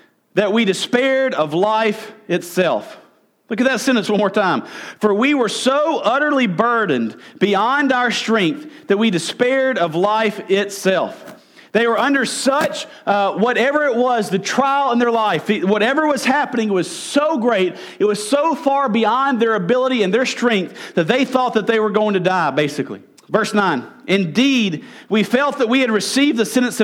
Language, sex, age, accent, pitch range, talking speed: English, male, 40-59, American, 200-265 Hz, 175 wpm